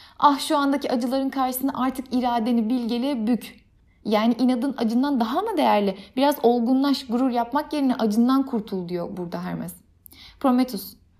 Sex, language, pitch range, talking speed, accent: female, Turkish, 215-270 Hz, 140 wpm, native